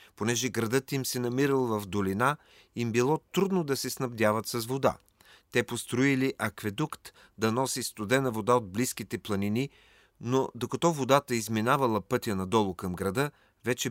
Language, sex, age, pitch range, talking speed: Bulgarian, male, 40-59, 105-135 Hz, 145 wpm